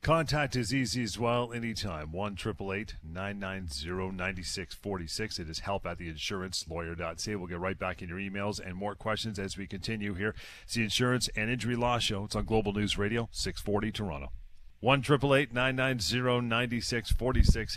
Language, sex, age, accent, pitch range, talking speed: English, male, 40-59, American, 90-115 Hz, 140 wpm